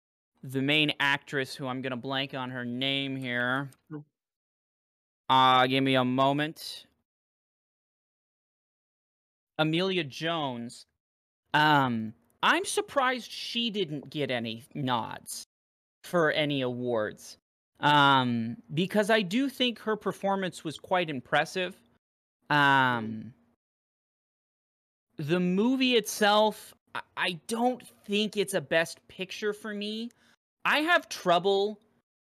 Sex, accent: male, American